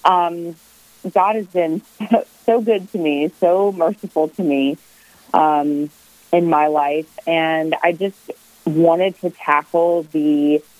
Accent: American